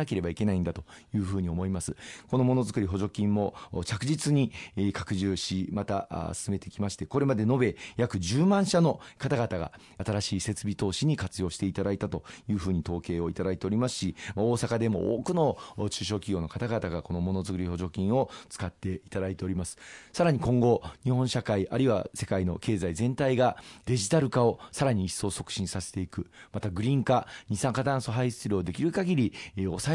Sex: male